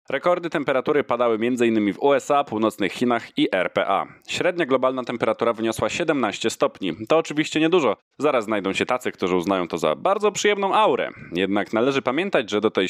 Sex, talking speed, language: male, 170 wpm, Polish